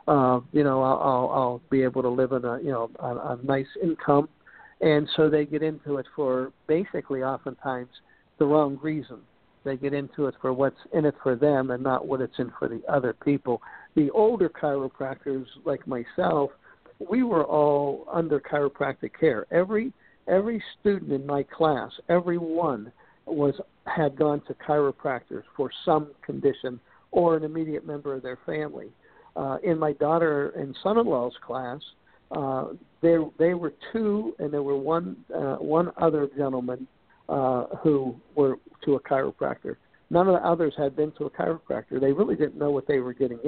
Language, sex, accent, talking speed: English, male, American, 175 wpm